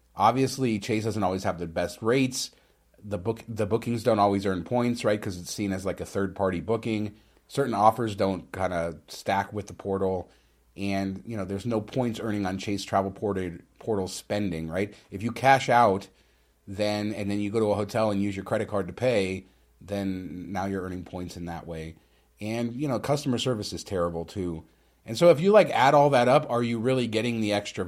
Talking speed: 215 wpm